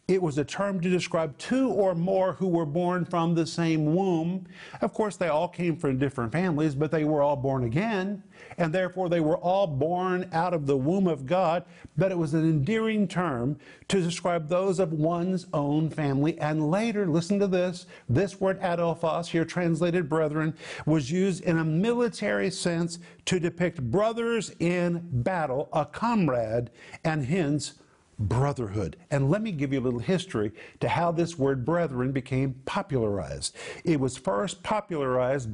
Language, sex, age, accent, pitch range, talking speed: English, male, 50-69, American, 145-180 Hz, 170 wpm